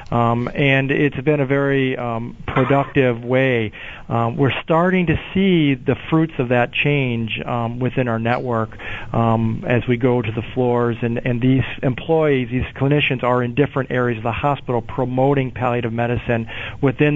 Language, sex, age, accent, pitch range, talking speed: English, male, 40-59, American, 120-140 Hz, 165 wpm